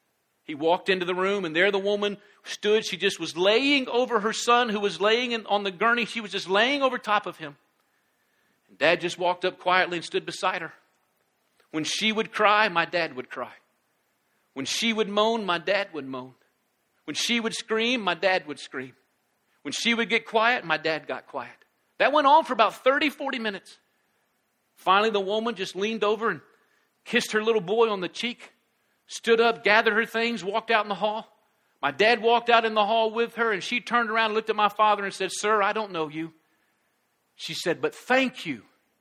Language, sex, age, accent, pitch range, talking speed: English, male, 50-69, American, 190-235 Hz, 210 wpm